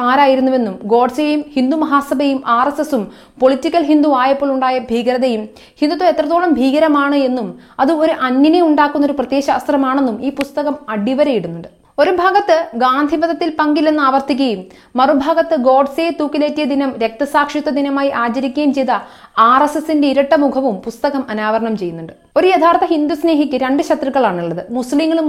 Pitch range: 255-310 Hz